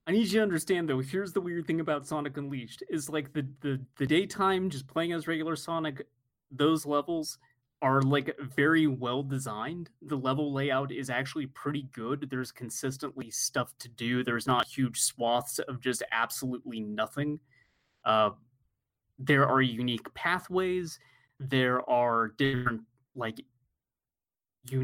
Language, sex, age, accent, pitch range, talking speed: English, male, 30-49, American, 125-155 Hz, 145 wpm